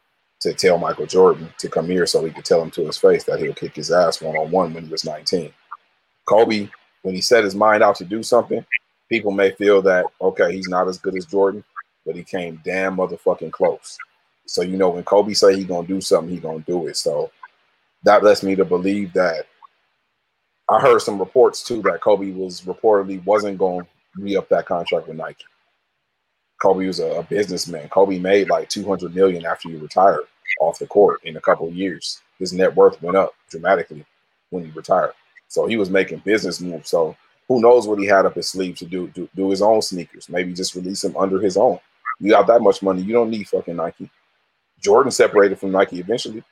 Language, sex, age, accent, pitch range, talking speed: English, male, 30-49, American, 95-110 Hz, 210 wpm